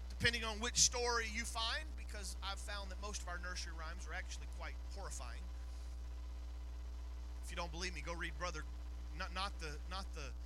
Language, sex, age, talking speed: English, male, 30-49, 185 wpm